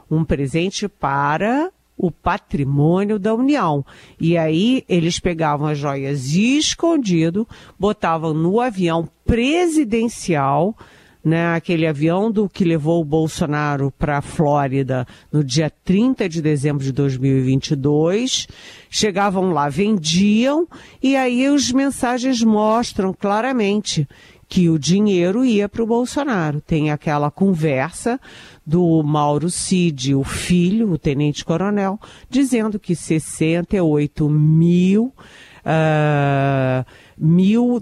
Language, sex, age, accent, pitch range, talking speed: Portuguese, female, 50-69, Brazilian, 155-215 Hz, 110 wpm